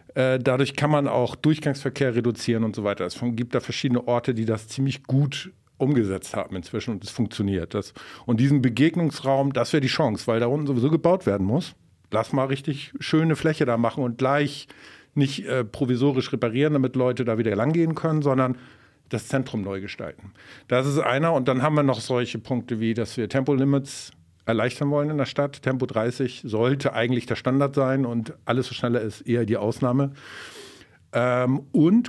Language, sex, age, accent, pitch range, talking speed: German, male, 50-69, German, 115-140 Hz, 185 wpm